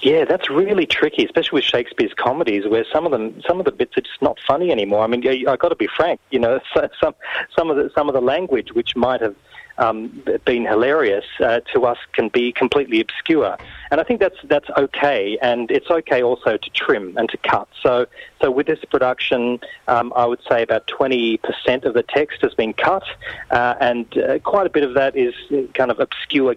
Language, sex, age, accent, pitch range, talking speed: English, male, 40-59, Australian, 110-170 Hz, 215 wpm